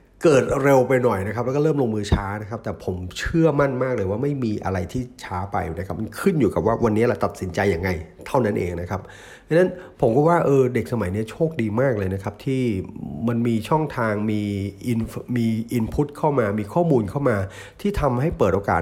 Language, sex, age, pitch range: Thai, male, 30-49, 100-130 Hz